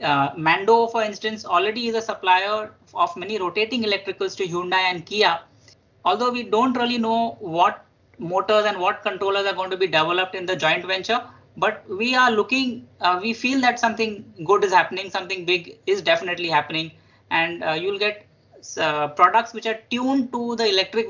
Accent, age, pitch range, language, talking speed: Indian, 20-39, 175-230 Hz, English, 185 wpm